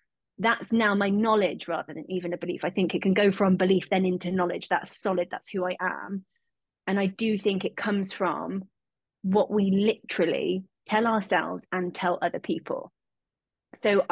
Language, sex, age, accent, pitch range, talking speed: English, female, 20-39, British, 185-215 Hz, 180 wpm